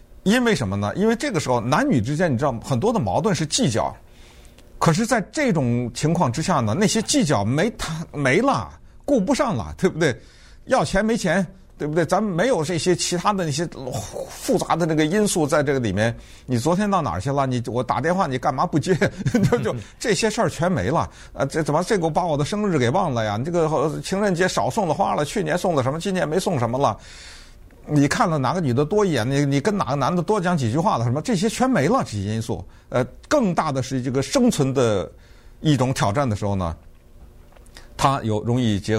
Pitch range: 120-190 Hz